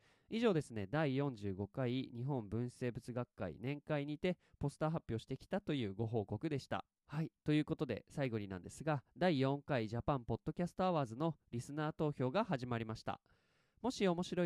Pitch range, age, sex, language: 115-160 Hz, 20-39, male, Japanese